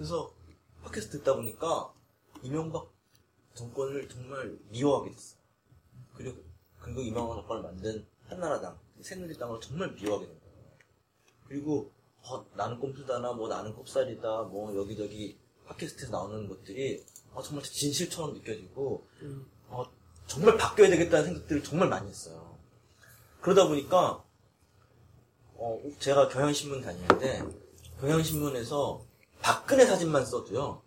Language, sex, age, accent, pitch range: Korean, male, 30-49, native, 110-150 Hz